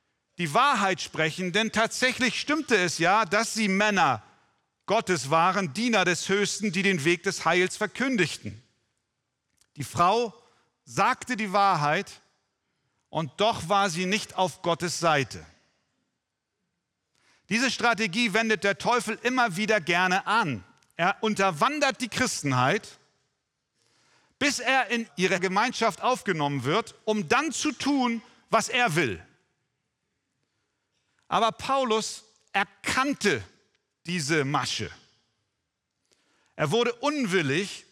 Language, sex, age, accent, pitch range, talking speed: German, male, 40-59, German, 175-240 Hz, 110 wpm